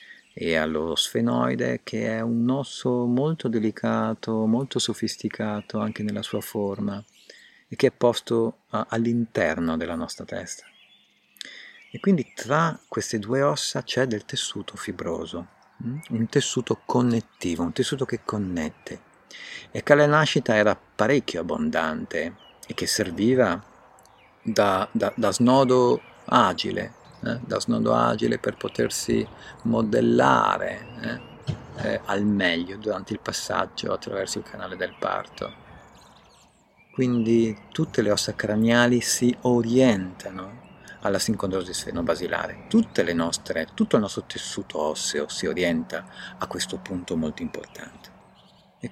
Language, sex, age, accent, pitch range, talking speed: Italian, male, 50-69, native, 105-125 Hz, 125 wpm